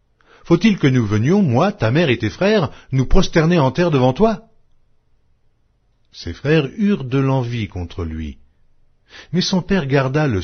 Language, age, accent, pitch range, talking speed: French, 60-79, French, 95-145 Hz, 160 wpm